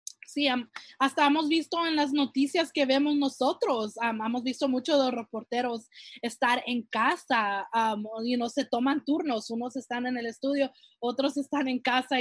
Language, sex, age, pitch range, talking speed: Spanish, female, 20-39, 240-290 Hz, 180 wpm